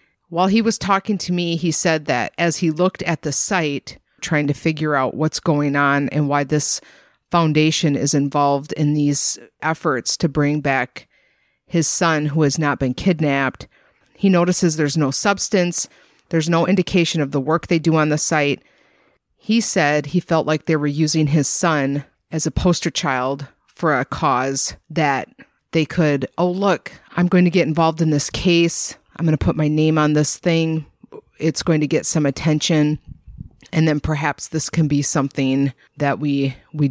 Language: English